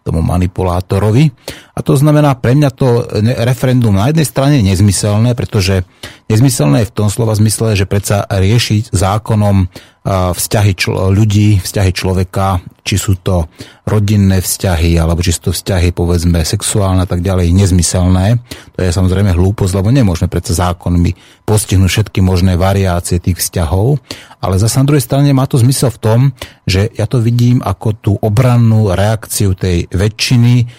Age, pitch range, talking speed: 30-49, 95-120 Hz, 155 wpm